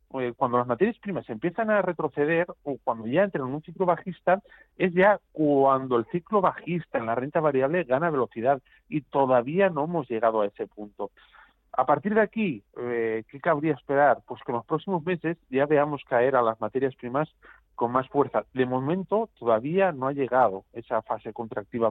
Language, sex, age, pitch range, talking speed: Spanish, male, 40-59, 125-170 Hz, 185 wpm